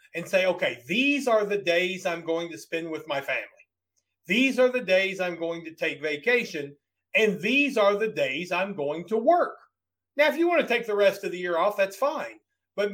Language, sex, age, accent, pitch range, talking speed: English, male, 40-59, American, 155-225 Hz, 220 wpm